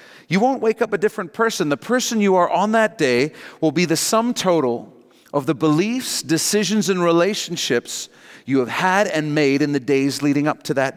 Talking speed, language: 200 wpm, English